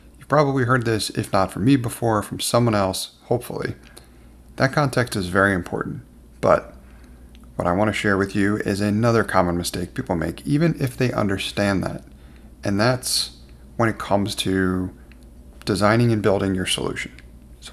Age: 30-49